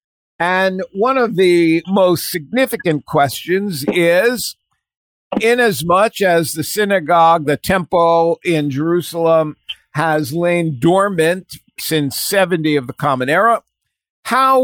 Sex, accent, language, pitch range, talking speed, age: male, American, English, 155-200 Hz, 105 wpm, 50-69